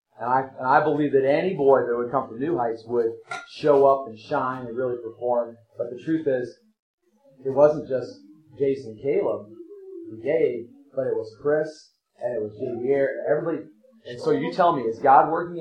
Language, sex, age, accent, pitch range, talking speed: English, male, 30-49, American, 125-165 Hz, 200 wpm